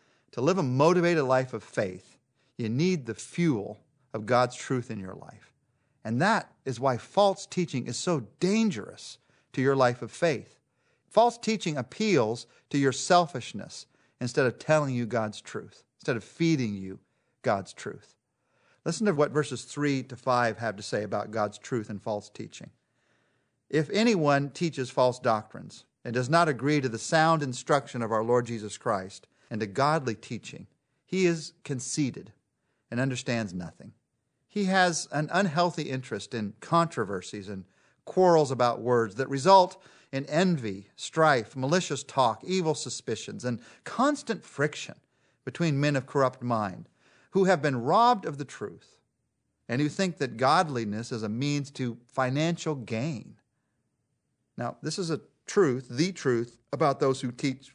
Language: English